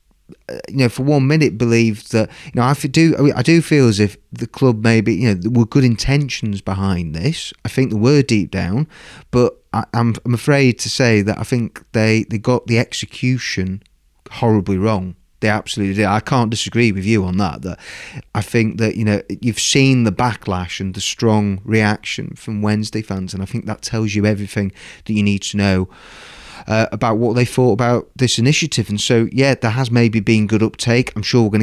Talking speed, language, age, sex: 215 wpm, English, 30-49, male